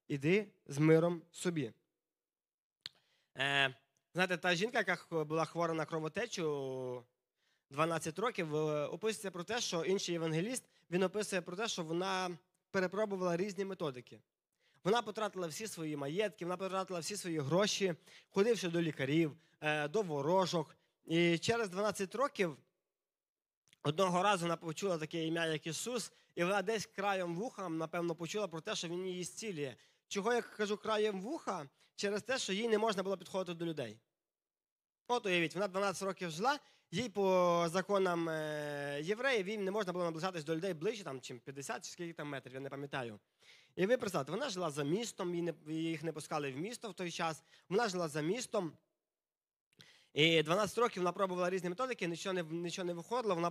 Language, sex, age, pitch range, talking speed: Ukrainian, male, 20-39, 160-200 Hz, 160 wpm